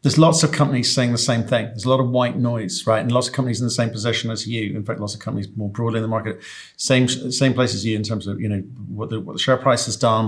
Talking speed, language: 310 wpm, English